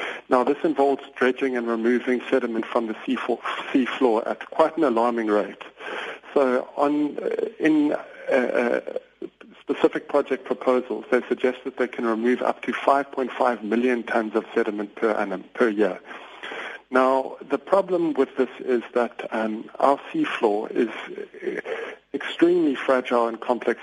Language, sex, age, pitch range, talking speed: English, male, 50-69, 115-145 Hz, 145 wpm